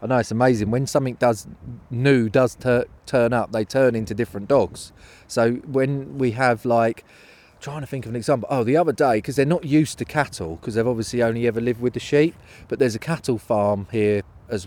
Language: English